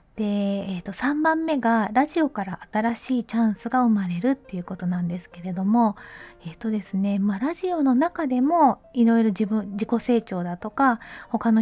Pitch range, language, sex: 200-255 Hz, Japanese, female